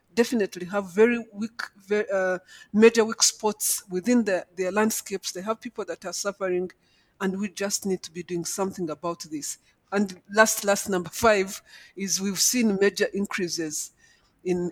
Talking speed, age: 165 wpm, 50-69